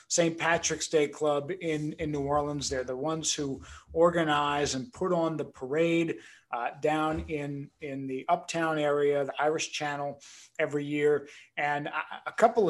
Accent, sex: American, male